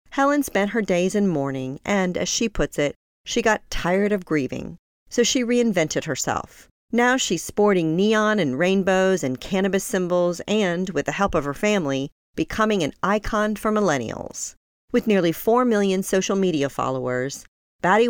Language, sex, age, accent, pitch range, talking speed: English, female, 40-59, American, 160-220 Hz, 165 wpm